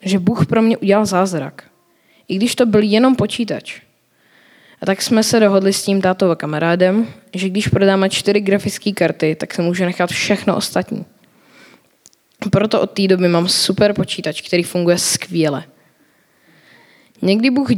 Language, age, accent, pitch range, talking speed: Czech, 20-39, native, 175-215 Hz, 150 wpm